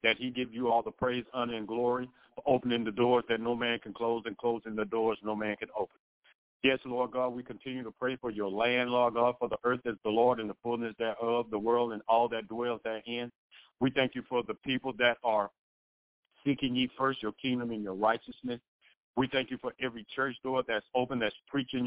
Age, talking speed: 50-69, 230 wpm